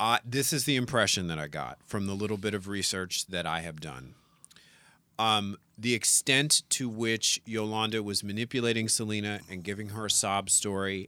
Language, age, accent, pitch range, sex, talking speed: English, 40-59, American, 100-120 Hz, male, 180 wpm